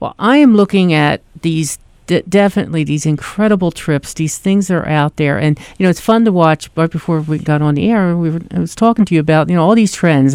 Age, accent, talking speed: 50-69, American, 260 wpm